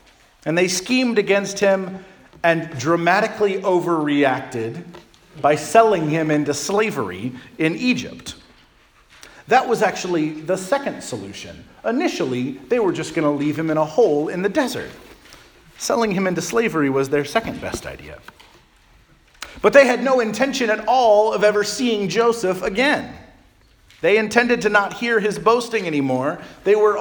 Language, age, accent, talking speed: English, 40-59, American, 145 wpm